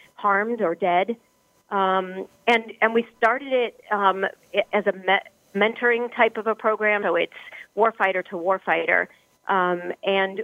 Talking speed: 140 wpm